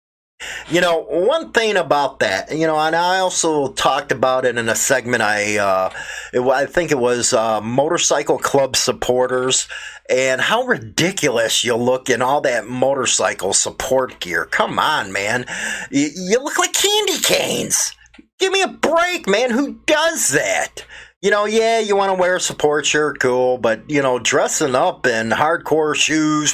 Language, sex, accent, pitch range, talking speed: English, male, American, 140-200 Hz, 165 wpm